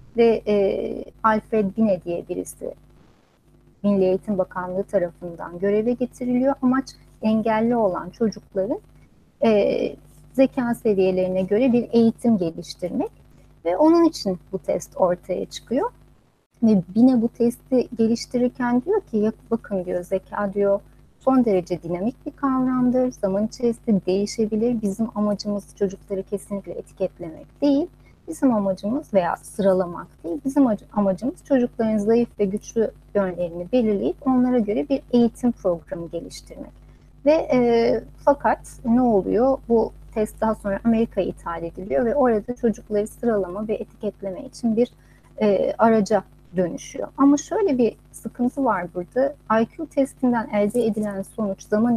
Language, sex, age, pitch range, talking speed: Turkish, female, 30-49, 195-245 Hz, 125 wpm